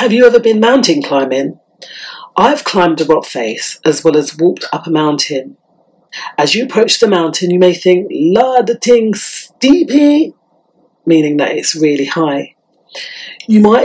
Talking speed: 160 wpm